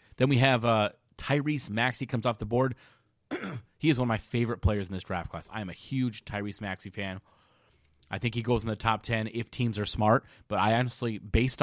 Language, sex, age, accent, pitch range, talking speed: English, male, 30-49, American, 100-125 Hz, 225 wpm